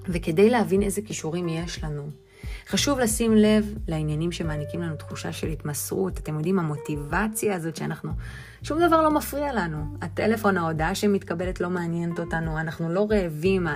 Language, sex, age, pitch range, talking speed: Hebrew, female, 30-49, 150-205 Hz, 150 wpm